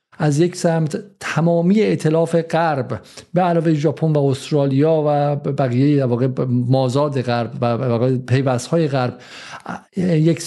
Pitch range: 140-170 Hz